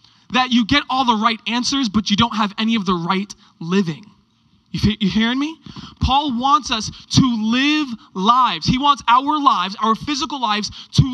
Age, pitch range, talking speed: 20-39, 190-250 Hz, 180 wpm